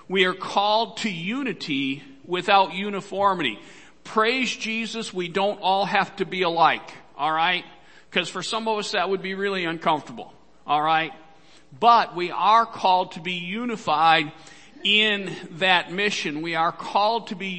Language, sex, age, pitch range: English, male, 50-69, 145-195 Hz